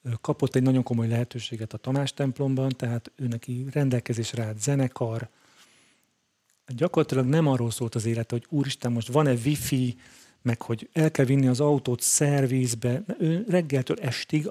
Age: 40-59